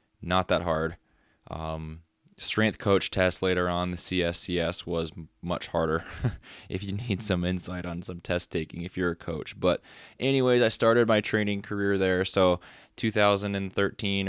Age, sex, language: 20-39, male, English